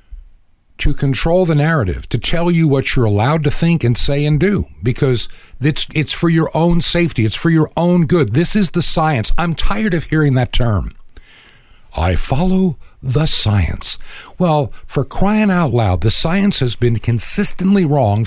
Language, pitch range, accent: English, 105-155 Hz, American